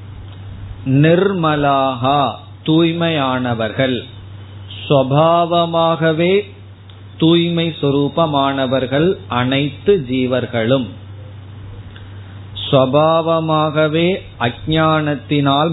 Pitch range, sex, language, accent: 115-155 Hz, male, Tamil, native